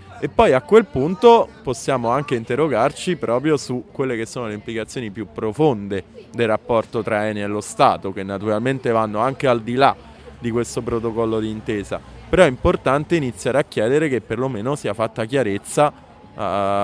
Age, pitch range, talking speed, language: 20-39, 110-135 Hz, 170 wpm, Italian